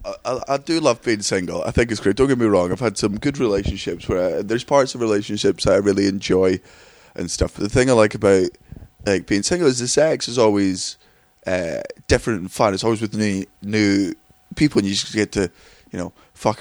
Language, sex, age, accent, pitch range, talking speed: English, male, 20-39, British, 95-115 Hz, 230 wpm